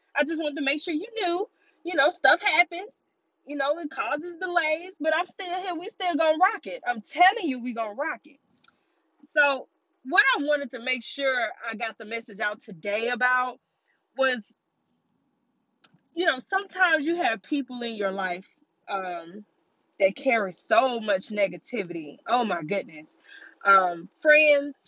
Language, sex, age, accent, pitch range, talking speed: English, female, 20-39, American, 230-330 Hz, 170 wpm